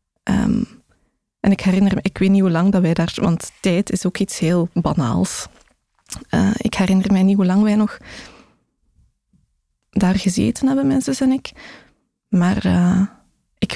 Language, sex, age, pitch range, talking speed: Dutch, female, 20-39, 190-220 Hz, 165 wpm